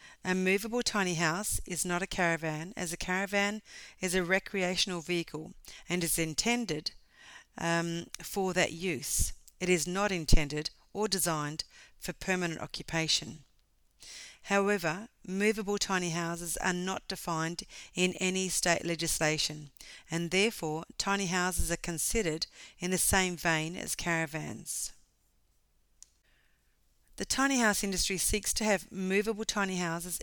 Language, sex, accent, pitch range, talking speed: English, female, Australian, 165-195 Hz, 125 wpm